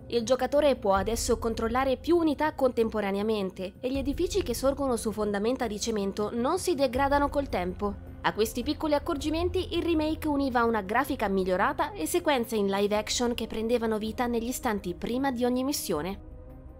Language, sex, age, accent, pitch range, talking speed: Italian, female, 20-39, native, 220-290 Hz, 165 wpm